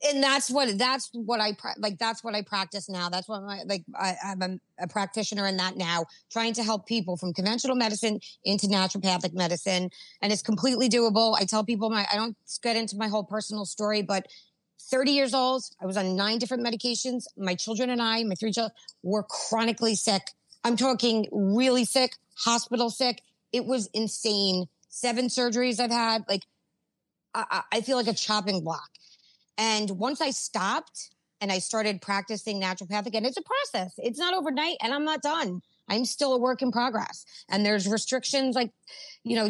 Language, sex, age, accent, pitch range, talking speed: English, female, 30-49, American, 200-250 Hz, 185 wpm